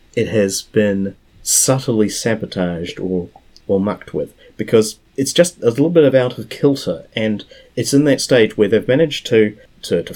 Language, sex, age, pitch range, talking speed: English, male, 30-49, 95-120 Hz, 175 wpm